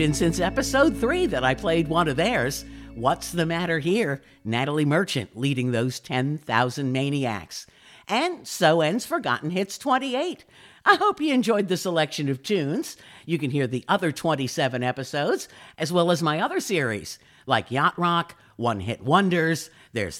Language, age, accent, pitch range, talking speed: English, 50-69, American, 135-195 Hz, 155 wpm